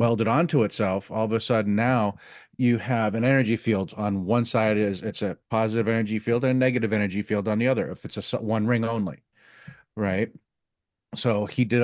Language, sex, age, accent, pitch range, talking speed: English, male, 40-59, American, 100-120 Hz, 205 wpm